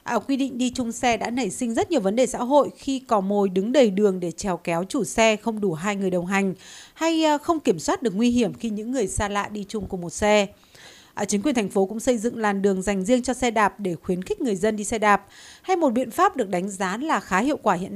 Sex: female